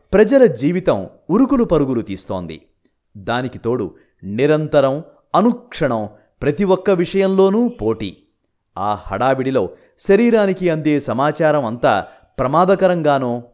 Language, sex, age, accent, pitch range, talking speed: Telugu, male, 30-49, native, 115-180 Hz, 90 wpm